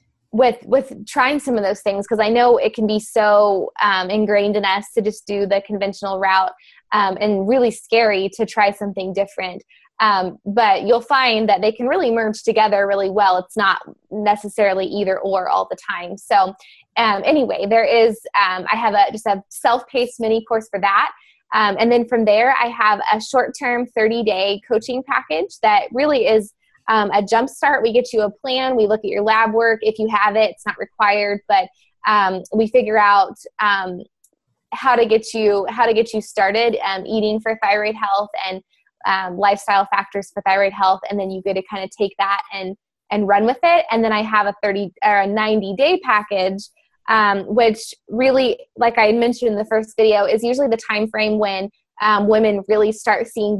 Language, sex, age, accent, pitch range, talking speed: English, female, 20-39, American, 200-230 Hz, 200 wpm